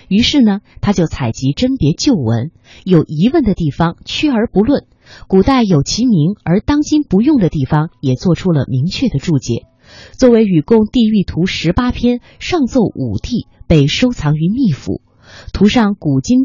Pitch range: 140-225 Hz